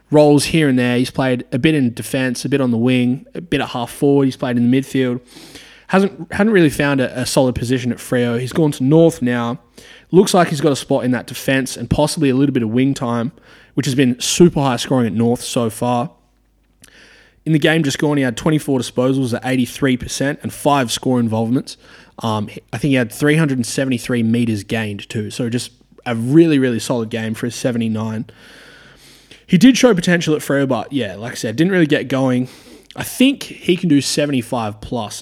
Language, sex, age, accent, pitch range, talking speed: English, male, 20-39, Australian, 120-145 Hz, 210 wpm